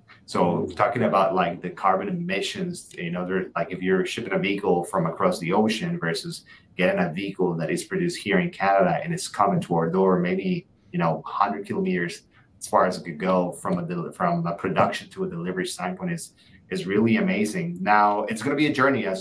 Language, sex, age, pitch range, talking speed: English, male, 30-49, 90-150 Hz, 210 wpm